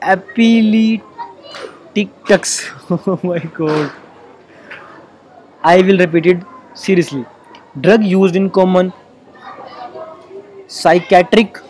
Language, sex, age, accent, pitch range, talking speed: Hindi, male, 20-39, native, 175-200 Hz, 75 wpm